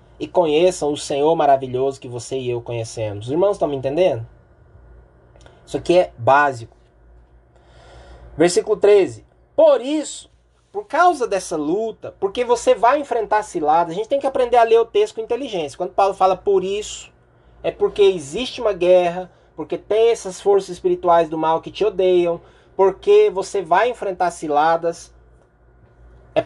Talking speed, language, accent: 155 wpm, Portuguese, Brazilian